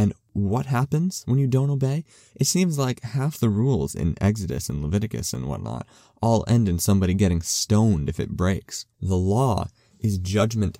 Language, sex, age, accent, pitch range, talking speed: English, male, 20-39, American, 90-115 Hz, 170 wpm